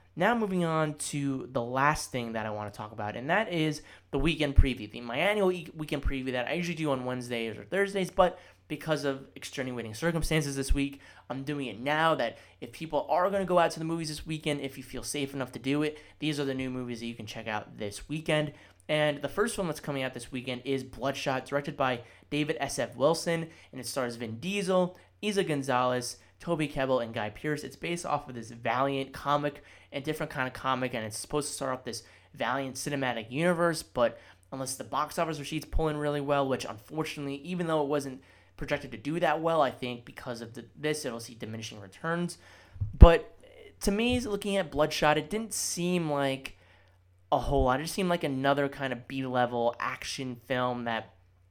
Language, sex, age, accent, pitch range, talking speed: English, male, 20-39, American, 120-155 Hz, 210 wpm